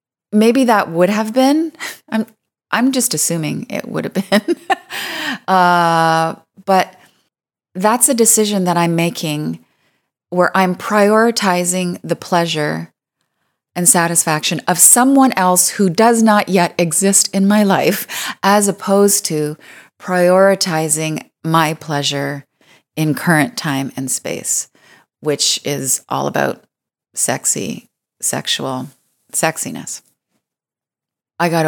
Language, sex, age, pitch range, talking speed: English, female, 30-49, 145-185 Hz, 110 wpm